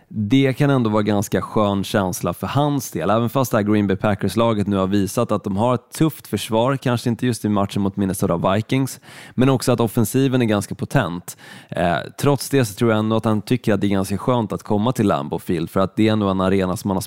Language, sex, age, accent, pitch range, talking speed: Swedish, male, 20-39, native, 100-120 Hz, 250 wpm